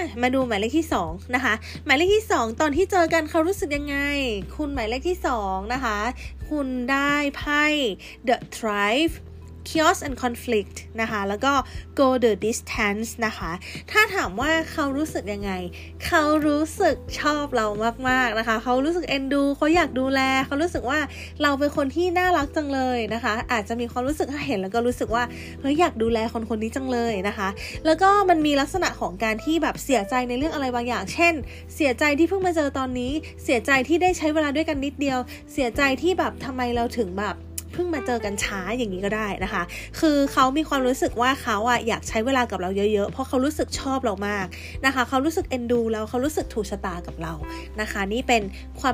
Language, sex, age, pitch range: Thai, female, 20-39, 230-315 Hz